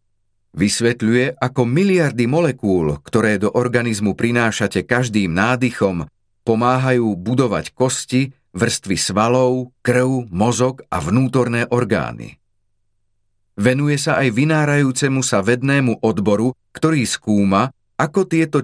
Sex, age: male, 40-59